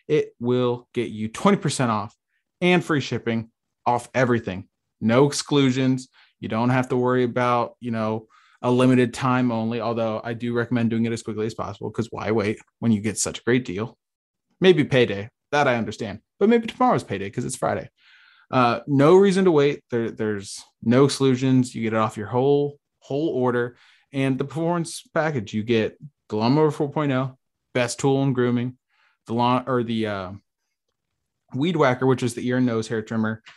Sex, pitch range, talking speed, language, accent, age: male, 115-140 Hz, 180 wpm, English, American, 20-39